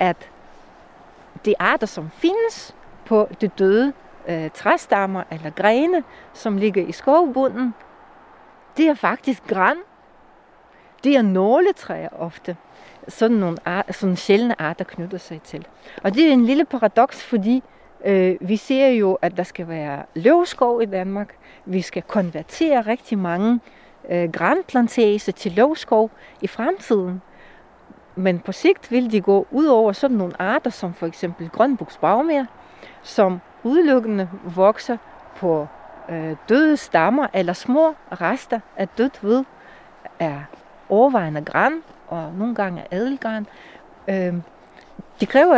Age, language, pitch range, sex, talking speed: 60-79, Danish, 185-255 Hz, female, 130 wpm